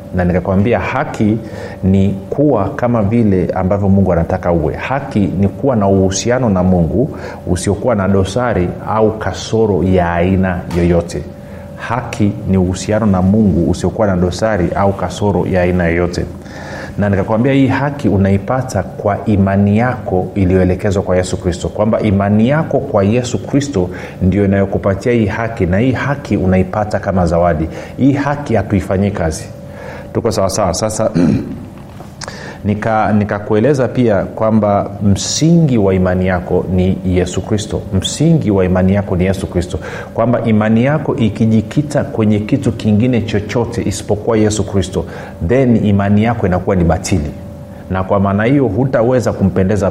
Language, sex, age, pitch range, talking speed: Swahili, male, 40-59, 95-110 Hz, 140 wpm